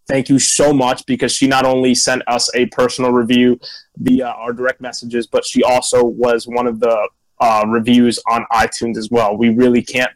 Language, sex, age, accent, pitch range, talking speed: English, male, 20-39, American, 120-135 Hz, 195 wpm